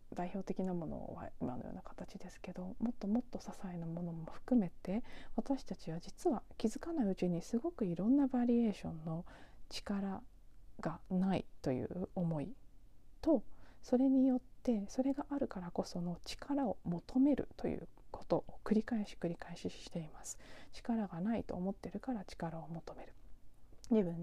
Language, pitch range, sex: Japanese, 170-215 Hz, female